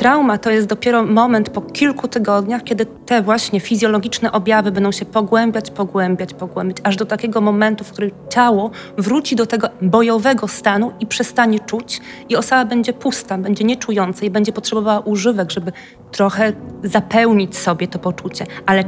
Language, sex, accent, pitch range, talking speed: Polish, female, native, 200-230 Hz, 160 wpm